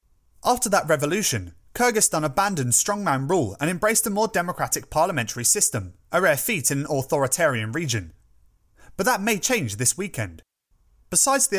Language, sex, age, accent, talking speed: English, male, 30-49, British, 150 wpm